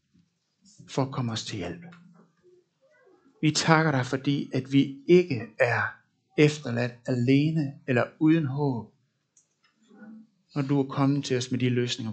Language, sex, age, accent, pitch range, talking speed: Danish, male, 60-79, native, 130-180 Hz, 140 wpm